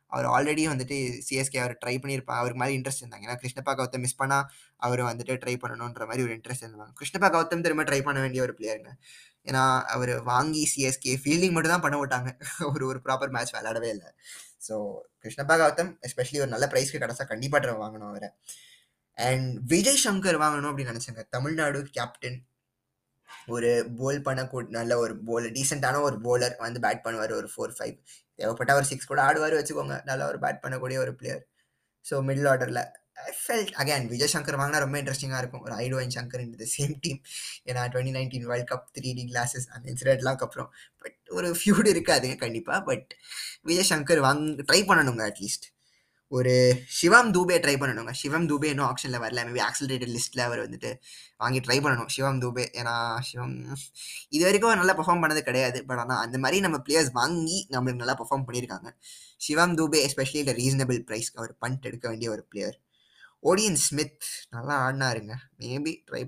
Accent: native